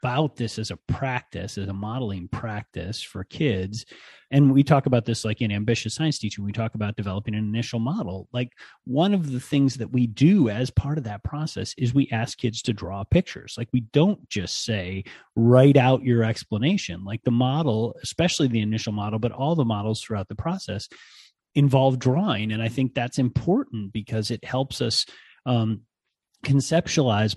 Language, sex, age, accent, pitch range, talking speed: English, male, 30-49, American, 110-135 Hz, 185 wpm